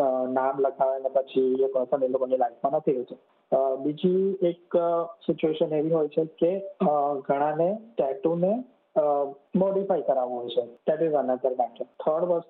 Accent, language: native, Gujarati